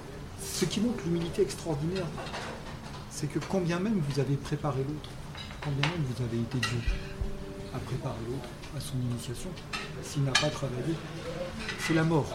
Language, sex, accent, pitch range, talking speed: French, male, French, 130-150 Hz, 155 wpm